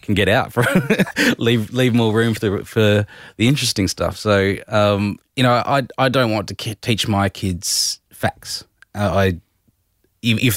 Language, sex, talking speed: English, male, 175 wpm